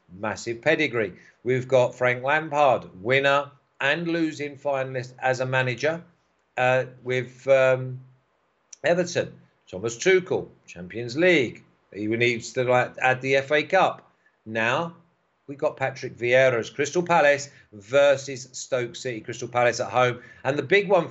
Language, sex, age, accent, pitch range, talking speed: English, male, 50-69, British, 120-145 Hz, 135 wpm